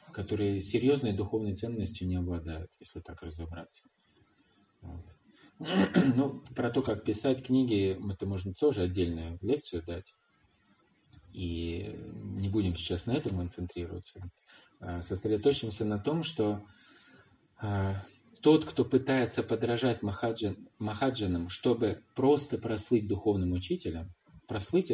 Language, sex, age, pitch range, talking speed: Russian, male, 20-39, 90-120 Hz, 115 wpm